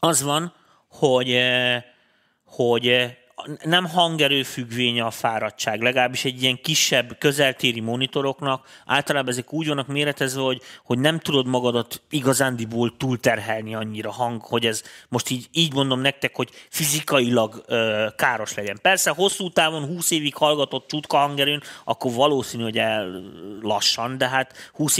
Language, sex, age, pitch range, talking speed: Hungarian, male, 30-49, 115-145 Hz, 135 wpm